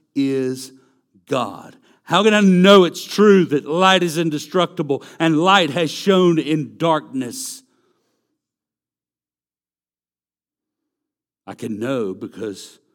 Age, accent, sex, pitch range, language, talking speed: 60-79, American, male, 135-185 Hz, English, 100 wpm